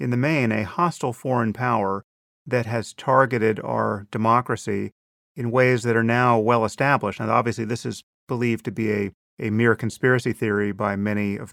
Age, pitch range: 30-49, 110-130 Hz